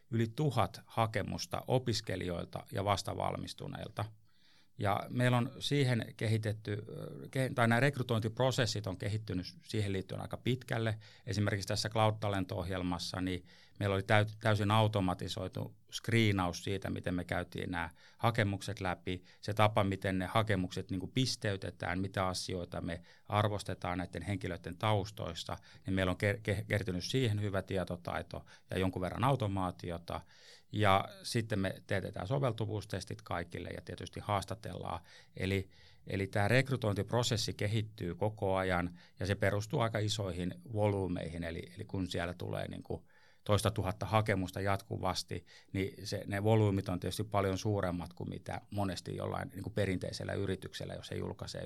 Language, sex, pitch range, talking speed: Finnish, male, 90-110 Hz, 130 wpm